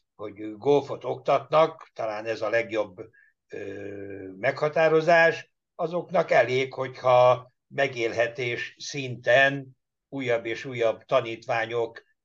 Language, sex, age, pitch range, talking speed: Hungarian, male, 60-79, 115-140 Hz, 90 wpm